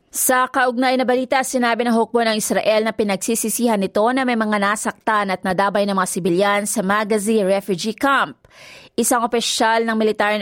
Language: Filipino